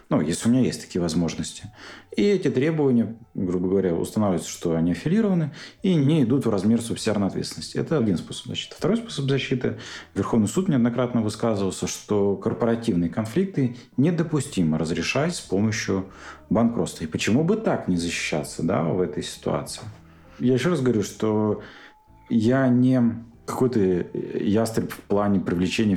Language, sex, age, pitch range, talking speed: Russian, male, 40-59, 95-125 Hz, 145 wpm